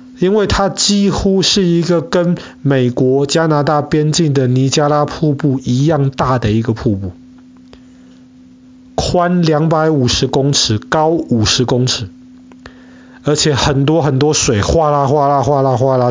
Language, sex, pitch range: Chinese, male, 135-190 Hz